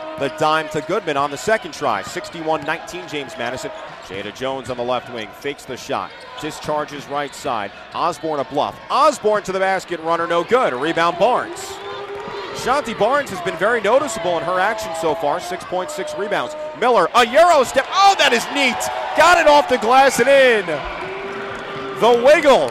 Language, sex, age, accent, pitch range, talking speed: English, male, 30-49, American, 145-235 Hz, 170 wpm